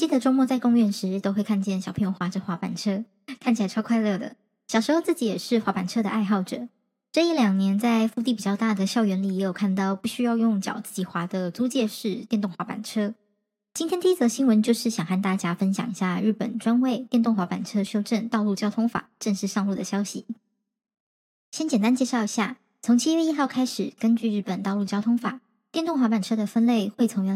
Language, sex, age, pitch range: Chinese, male, 20-39, 195-240 Hz